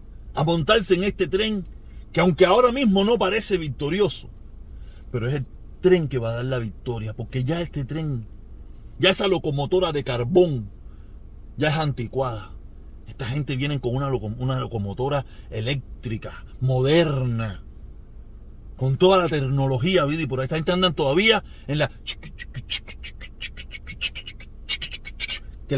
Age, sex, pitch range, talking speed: 40-59, male, 105-175 Hz, 135 wpm